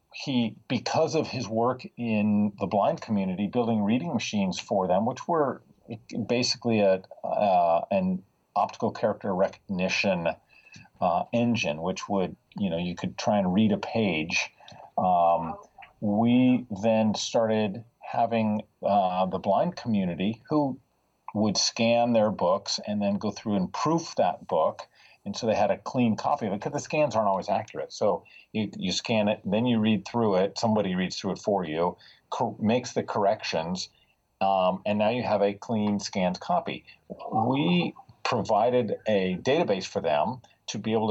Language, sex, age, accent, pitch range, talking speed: English, male, 40-59, American, 100-120 Hz, 160 wpm